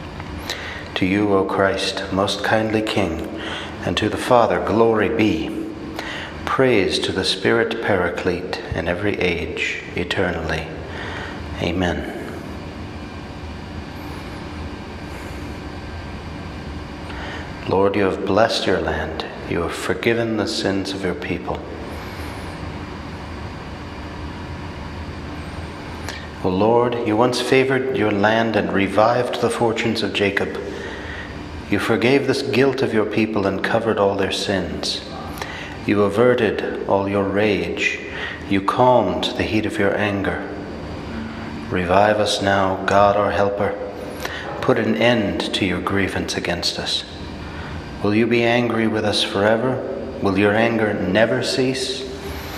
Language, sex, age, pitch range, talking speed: English, male, 60-79, 85-105 Hz, 115 wpm